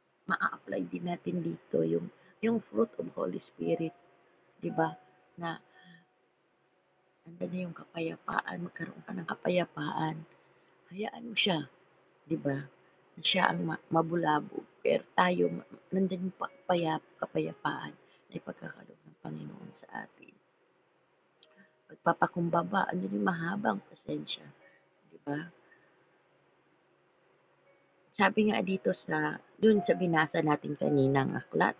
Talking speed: 105 wpm